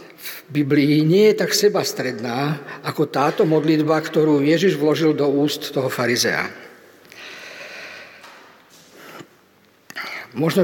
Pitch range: 145-175 Hz